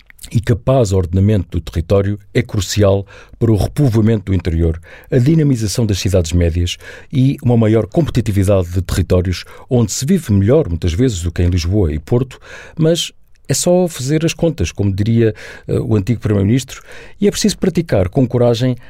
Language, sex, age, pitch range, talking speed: Portuguese, male, 50-69, 100-130 Hz, 170 wpm